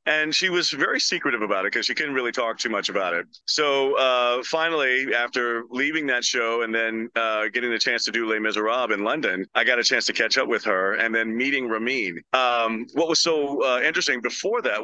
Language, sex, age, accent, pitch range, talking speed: English, male, 40-59, American, 110-145 Hz, 225 wpm